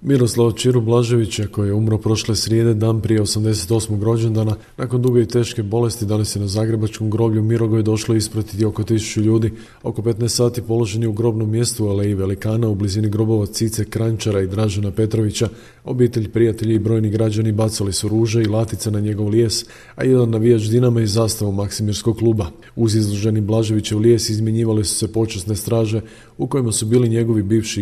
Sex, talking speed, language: male, 180 wpm, Croatian